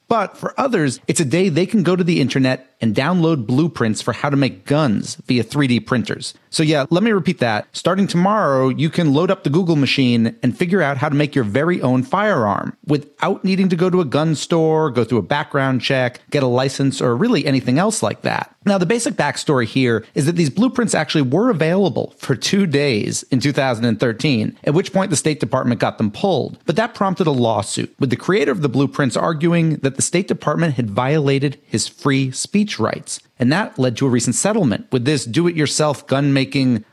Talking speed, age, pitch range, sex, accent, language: 210 wpm, 40-59, 125-170 Hz, male, American, English